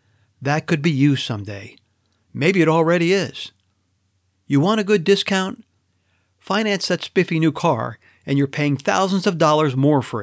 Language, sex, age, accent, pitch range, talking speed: English, male, 50-69, American, 105-155 Hz, 160 wpm